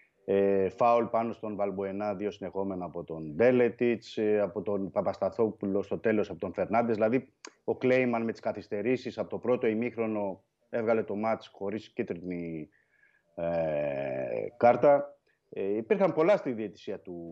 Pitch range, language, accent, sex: 100-135 Hz, Greek, native, male